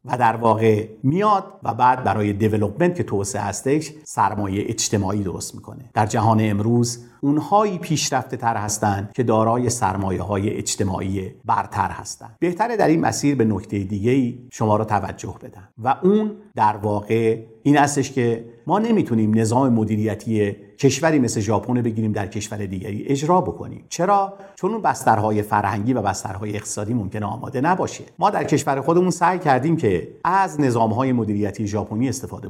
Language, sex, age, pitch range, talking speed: English, male, 50-69, 105-140 Hz, 155 wpm